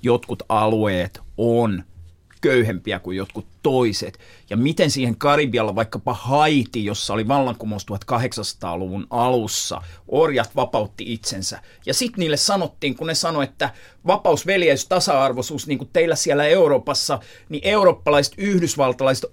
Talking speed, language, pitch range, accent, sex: 125 wpm, Finnish, 115-170 Hz, native, male